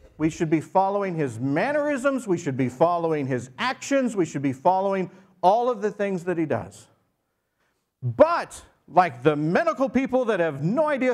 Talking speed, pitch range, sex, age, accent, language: 170 wpm, 160-225 Hz, male, 50-69, American, English